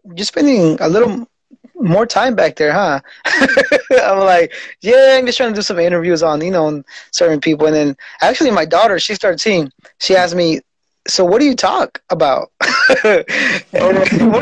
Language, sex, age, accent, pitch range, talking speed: English, male, 20-39, American, 165-235 Hz, 175 wpm